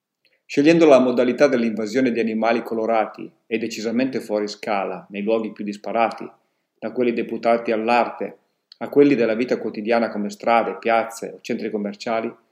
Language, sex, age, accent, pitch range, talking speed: Italian, male, 40-59, native, 110-125 Hz, 145 wpm